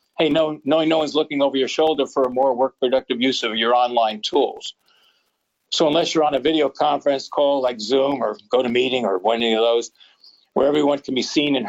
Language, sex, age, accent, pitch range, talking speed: English, male, 50-69, American, 130-150 Hz, 200 wpm